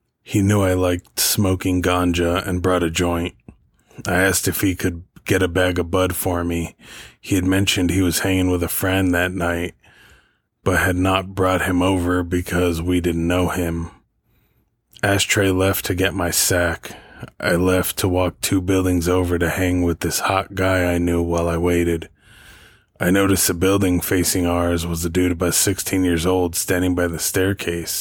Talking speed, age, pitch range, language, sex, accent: 180 wpm, 20-39, 90-95 Hz, English, male, American